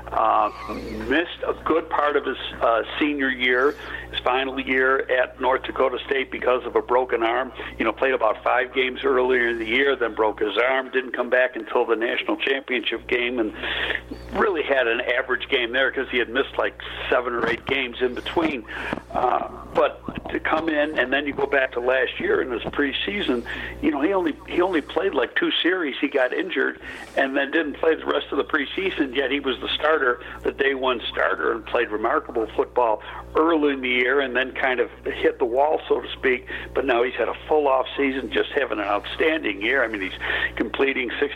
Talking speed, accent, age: 210 wpm, American, 60-79